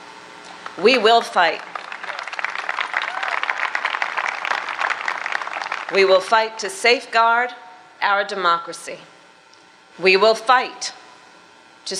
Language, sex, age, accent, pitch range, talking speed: English, female, 40-59, American, 195-260 Hz, 70 wpm